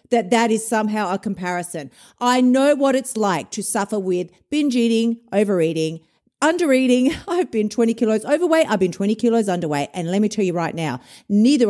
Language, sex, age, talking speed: English, female, 50-69, 185 wpm